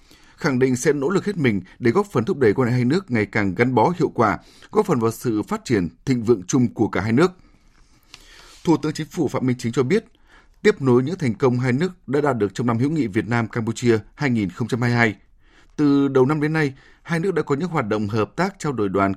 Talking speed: 245 wpm